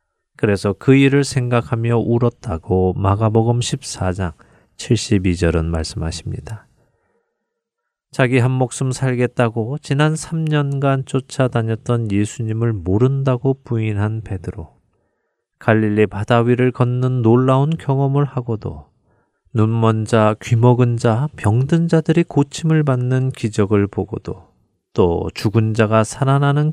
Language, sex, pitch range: Korean, male, 105-135 Hz